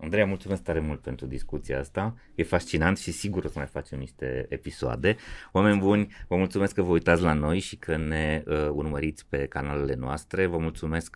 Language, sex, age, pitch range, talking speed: Romanian, male, 30-49, 70-85 Hz, 190 wpm